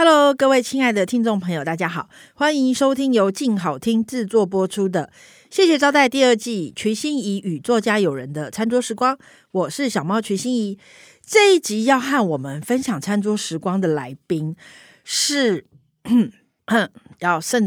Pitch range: 165-230 Hz